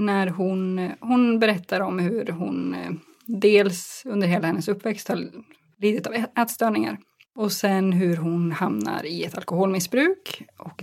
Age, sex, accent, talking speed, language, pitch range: 20-39, female, Swedish, 140 wpm, English, 190-235 Hz